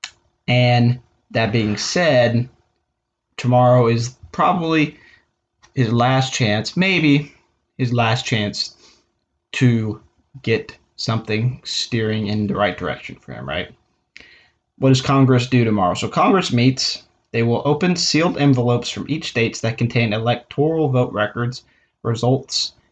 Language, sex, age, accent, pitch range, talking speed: English, male, 20-39, American, 115-135 Hz, 125 wpm